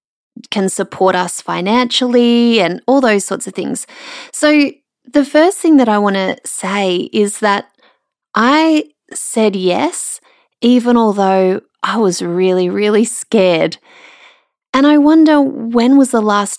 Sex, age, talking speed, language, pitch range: female, 20-39, 140 wpm, English, 190-260 Hz